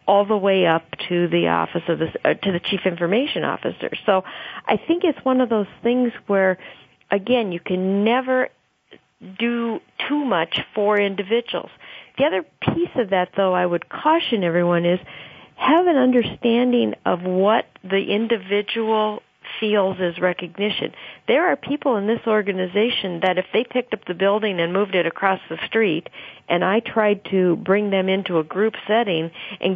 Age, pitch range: 50-69, 180-230 Hz